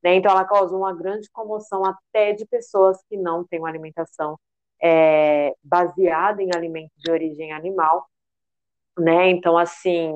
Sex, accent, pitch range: female, Brazilian, 160-190 Hz